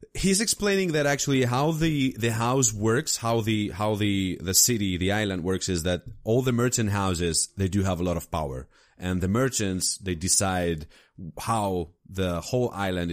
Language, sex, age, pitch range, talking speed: English, male, 30-49, 85-110 Hz, 185 wpm